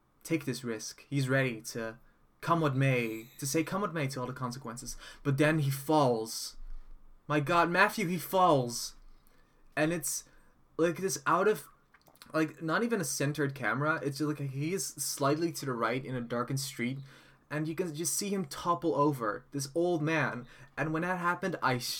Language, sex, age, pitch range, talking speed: English, male, 20-39, 125-150 Hz, 180 wpm